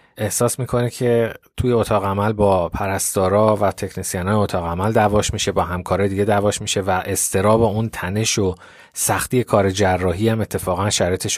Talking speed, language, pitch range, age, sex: 160 wpm, Persian, 95-120 Hz, 30-49, male